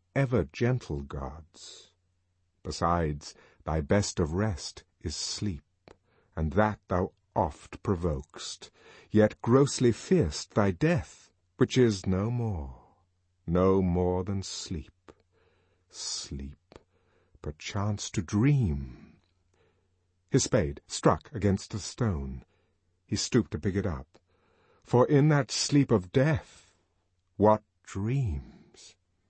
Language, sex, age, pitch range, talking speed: English, male, 50-69, 90-120 Hz, 105 wpm